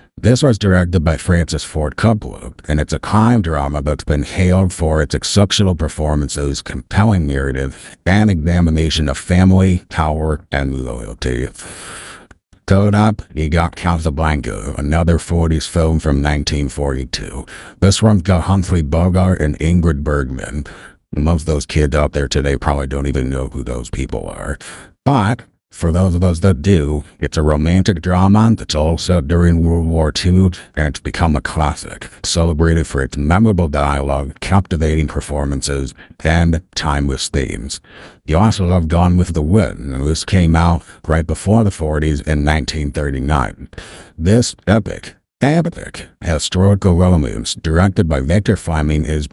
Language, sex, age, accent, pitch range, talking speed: English, male, 50-69, American, 75-90 Hz, 145 wpm